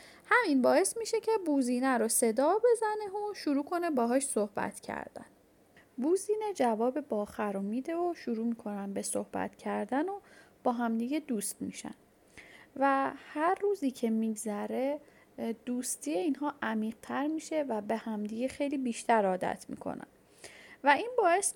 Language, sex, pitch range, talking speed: Persian, female, 225-330 Hz, 135 wpm